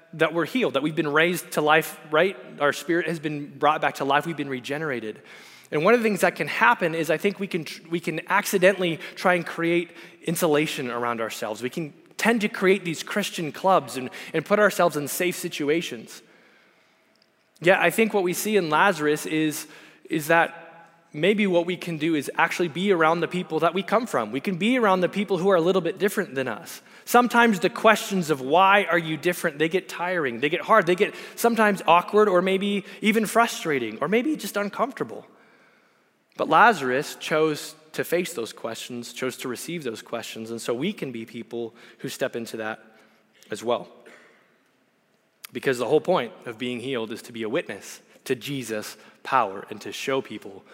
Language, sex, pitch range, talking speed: English, male, 145-190 Hz, 195 wpm